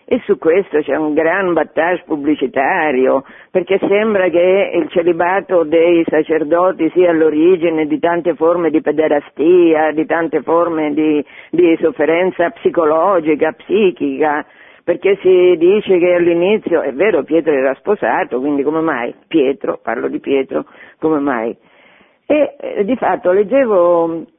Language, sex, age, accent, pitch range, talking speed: Italian, female, 50-69, native, 155-180 Hz, 130 wpm